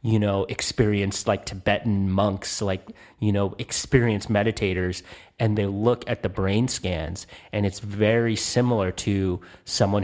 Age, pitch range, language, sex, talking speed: 30-49, 95-110 Hz, English, male, 145 wpm